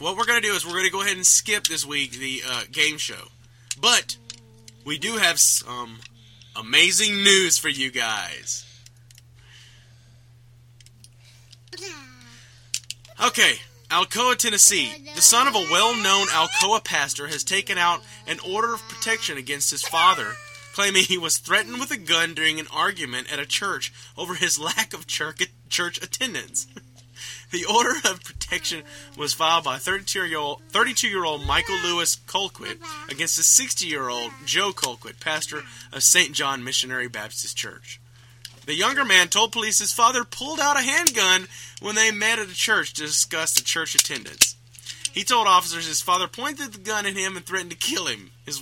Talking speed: 160 wpm